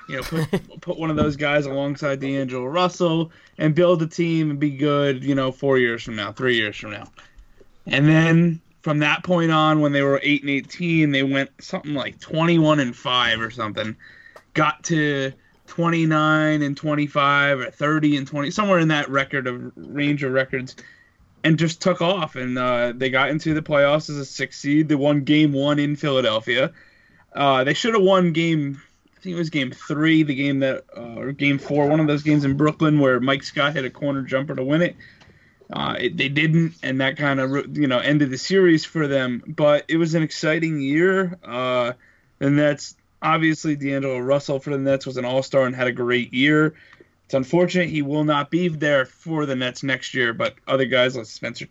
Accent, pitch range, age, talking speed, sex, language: American, 135-155 Hz, 20-39, 210 wpm, male, English